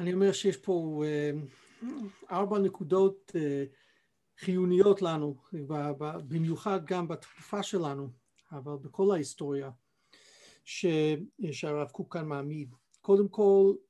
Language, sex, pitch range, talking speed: Hebrew, male, 150-190 Hz, 95 wpm